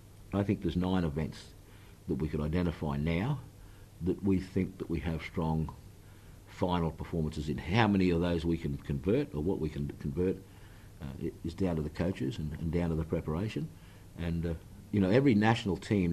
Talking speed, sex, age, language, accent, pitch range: 190 wpm, male, 50-69, English, Australian, 80-100 Hz